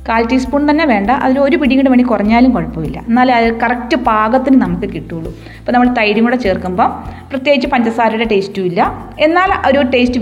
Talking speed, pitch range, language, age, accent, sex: 160 wpm, 210-280 Hz, Malayalam, 30-49, native, female